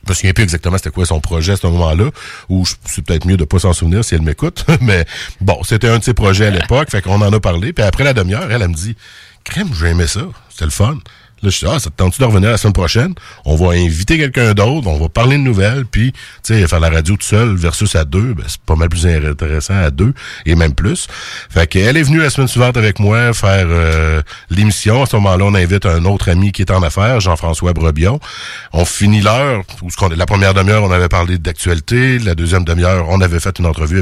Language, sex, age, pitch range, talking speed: French, male, 60-79, 85-110 Hz, 260 wpm